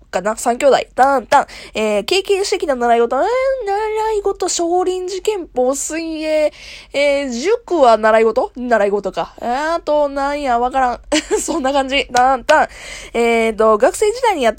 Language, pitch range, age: Japanese, 200-310 Hz, 20-39